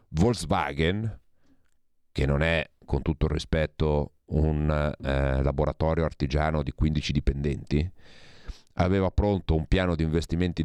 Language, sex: Italian, male